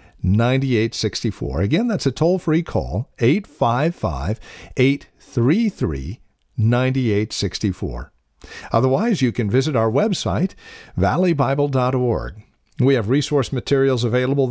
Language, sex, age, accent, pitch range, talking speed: English, male, 50-69, American, 105-140 Hz, 85 wpm